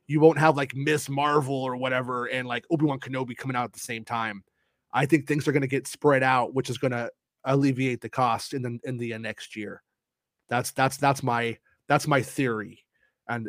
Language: English